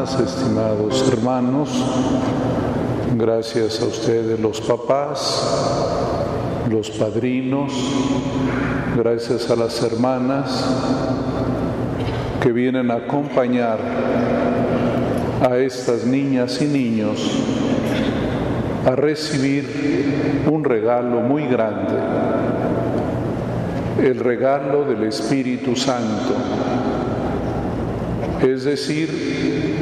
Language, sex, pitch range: Spanish, male, 120-135 Hz